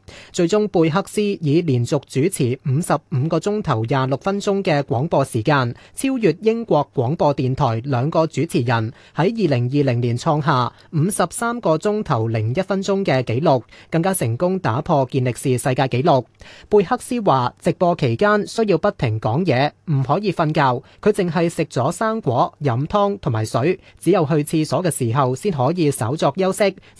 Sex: male